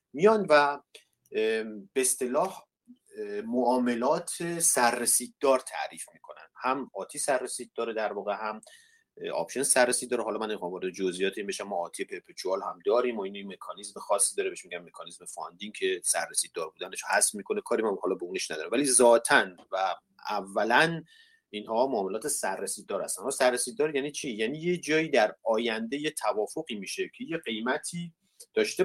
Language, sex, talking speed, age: Persian, male, 145 wpm, 30-49